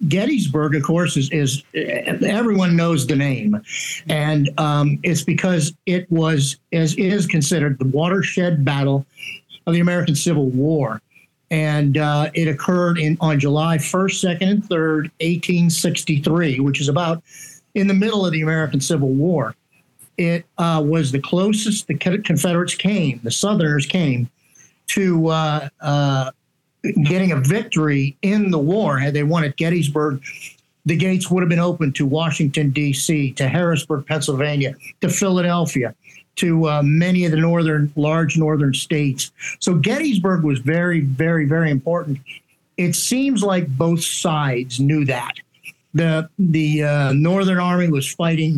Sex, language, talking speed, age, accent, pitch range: male, English, 145 wpm, 50-69, American, 145-175 Hz